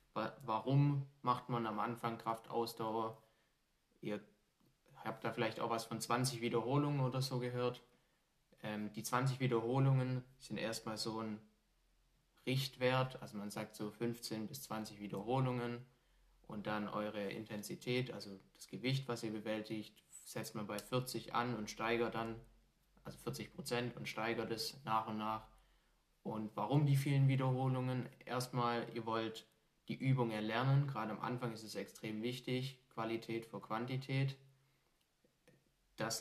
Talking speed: 140 wpm